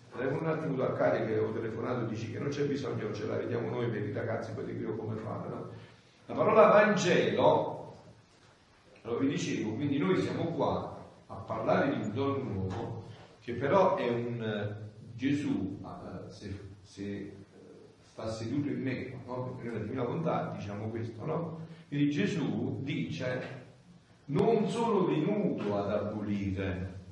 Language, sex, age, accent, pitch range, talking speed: Italian, male, 40-59, native, 110-155 Hz, 155 wpm